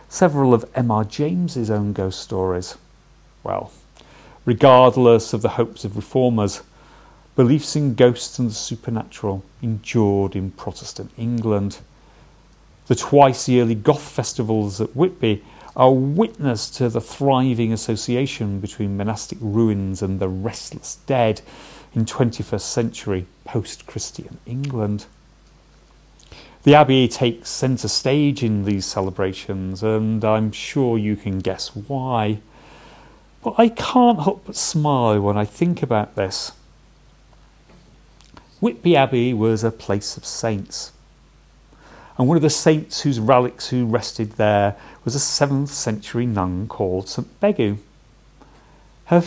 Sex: male